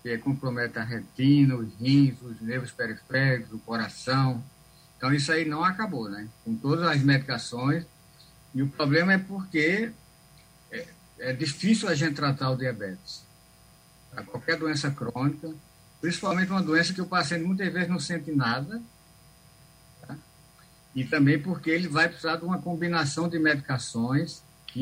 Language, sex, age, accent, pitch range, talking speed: Portuguese, male, 60-79, Brazilian, 125-160 Hz, 145 wpm